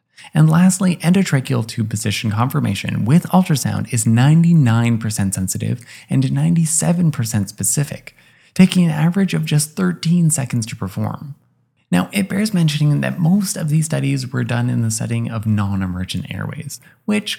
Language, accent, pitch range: English, American, 115-165 Hz